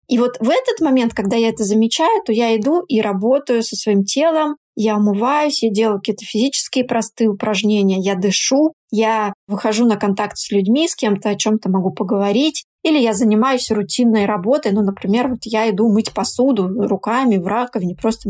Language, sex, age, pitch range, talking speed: Russian, female, 20-39, 210-255 Hz, 185 wpm